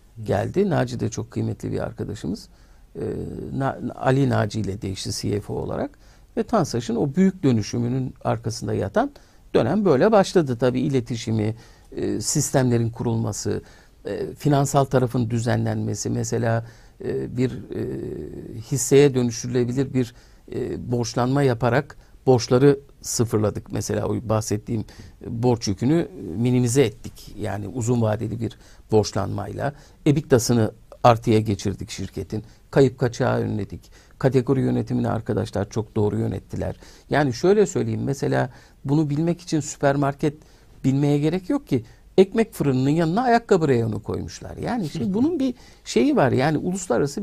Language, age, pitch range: Turkish, 50-69, 110-155 Hz